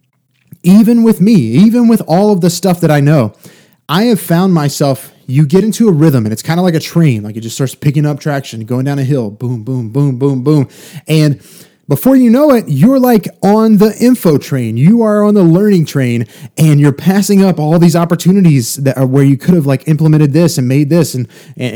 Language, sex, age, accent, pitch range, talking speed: English, male, 30-49, American, 130-180 Hz, 225 wpm